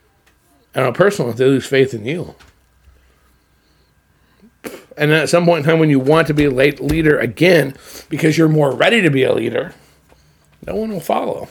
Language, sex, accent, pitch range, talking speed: English, male, American, 130-165 Hz, 180 wpm